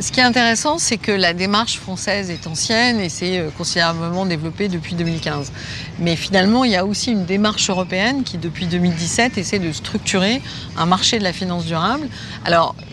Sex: female